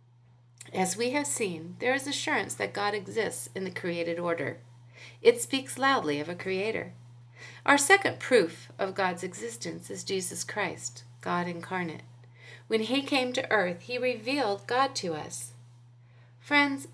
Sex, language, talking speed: female, English, 150 wpm